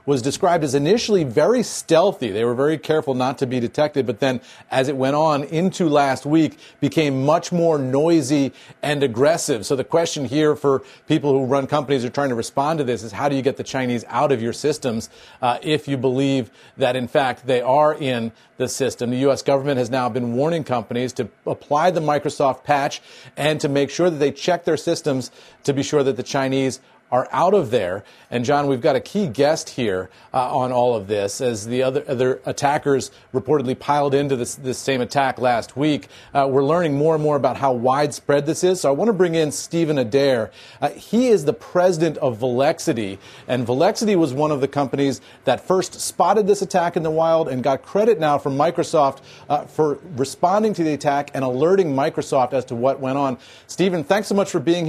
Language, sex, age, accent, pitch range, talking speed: English, male, 40-59, American, 130-160 Hz, 210 wpm